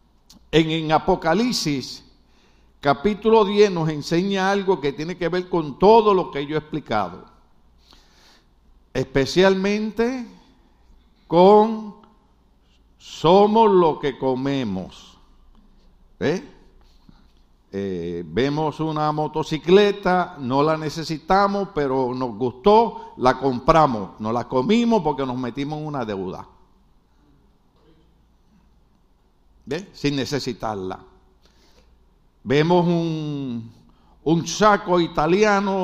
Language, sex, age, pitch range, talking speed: Spanish, male, 60-79, 130-185 Hz, 90 wpm